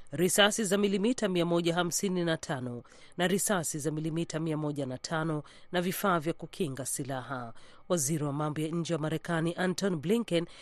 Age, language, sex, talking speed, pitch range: 40-59, Swahili, female, 165 wpm, 145-190 Hz